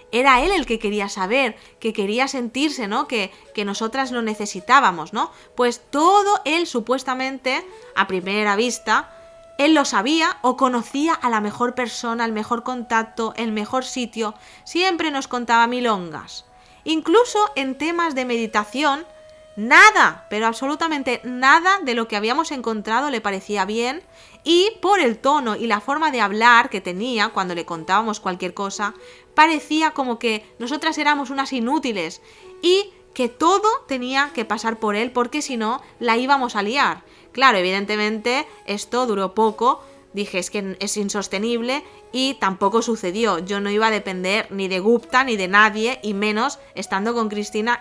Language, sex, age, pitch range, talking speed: Spanish, female, 30-49, 210-275 Hz, 160 wpm